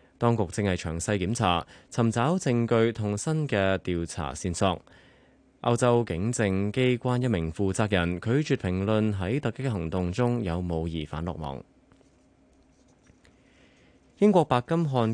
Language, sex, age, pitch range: Chinese, male, 20-39, 90-120 Hz